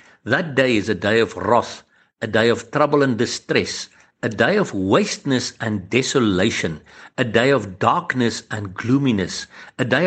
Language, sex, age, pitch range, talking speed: English, male, 60-79, 105-135 Hz, 160 wpm